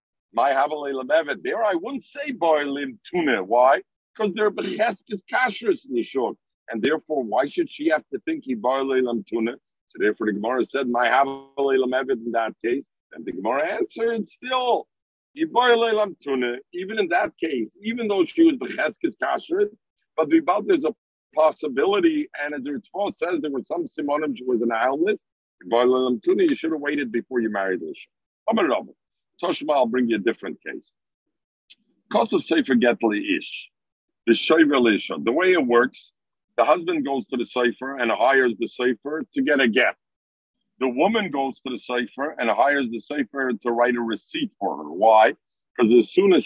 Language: English